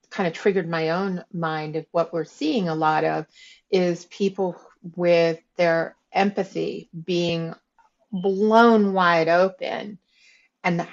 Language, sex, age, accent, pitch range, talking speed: English, female, 40-59, American, 165-205 Hz, 125 wpm